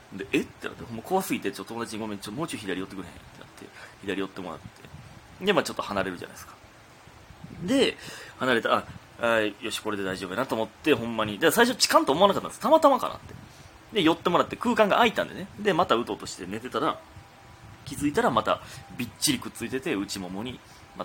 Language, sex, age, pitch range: Japanese, male, 30-49, 100-155 Hz